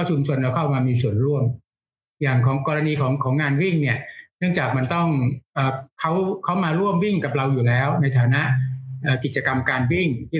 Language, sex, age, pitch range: Thai, male, 60-79, 125-150 Hz